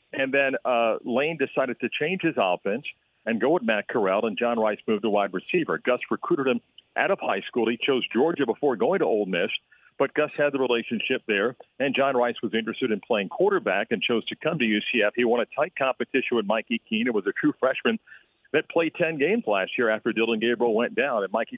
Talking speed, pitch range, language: 230 wpm, 115-145 Hz, English